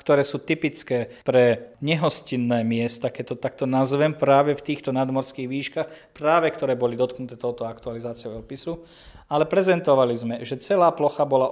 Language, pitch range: Slovak, 125-145 Hz